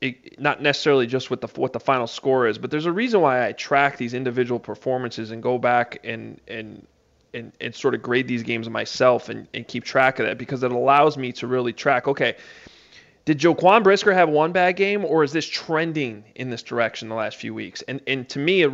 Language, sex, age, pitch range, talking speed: English, male, 20-39, 125-160 Hz, 225 wpm